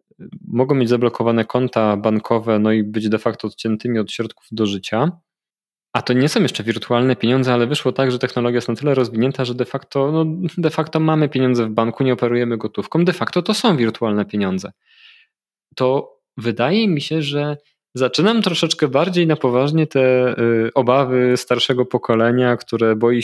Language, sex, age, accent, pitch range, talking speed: Polish, male, 20-39, native, 115-150 Hz, 165 wpm